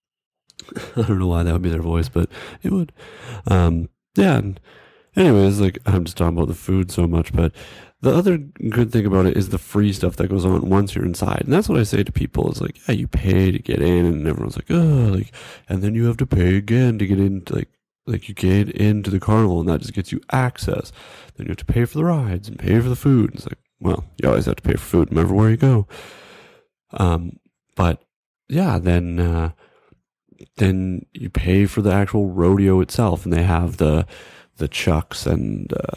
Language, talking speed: English, 220 wpm